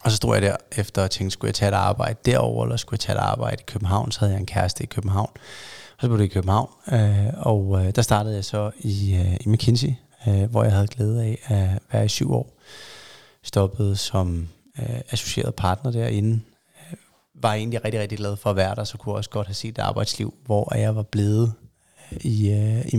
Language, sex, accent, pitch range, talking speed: Danish, male, native, 105-120 Hz, 210 wpm